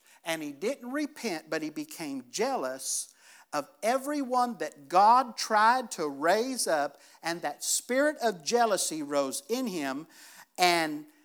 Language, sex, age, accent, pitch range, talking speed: English, male, 50-69, American, 190-285 Hz, 135 wpm